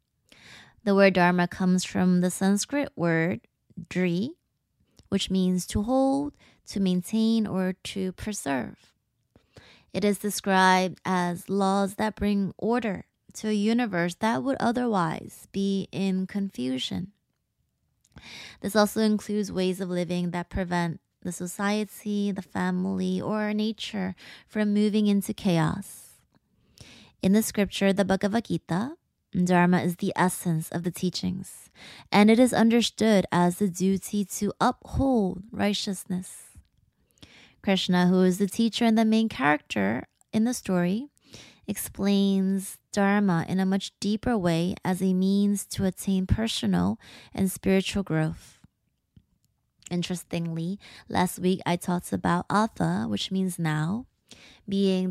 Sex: female